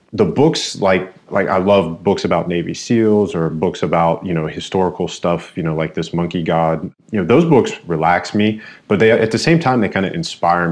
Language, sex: English, male